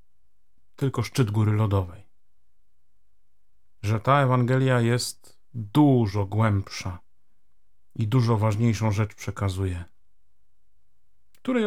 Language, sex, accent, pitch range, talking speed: Polish, male, native, 95-115 Hz, 80 wpm